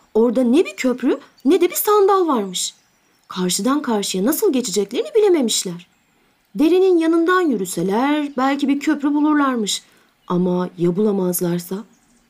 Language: Turkish